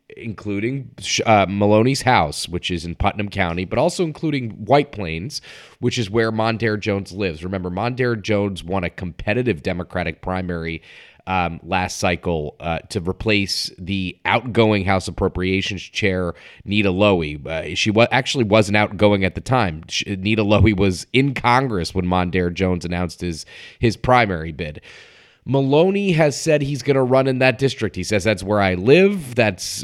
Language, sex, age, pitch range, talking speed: English, male, 30-49, 90-120 Hz, 160 wpm